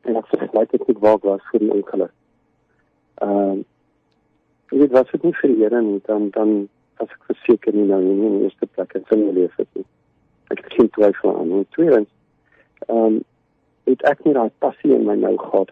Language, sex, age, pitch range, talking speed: English, male, 50-69, 105-130 Hz, 200 wpm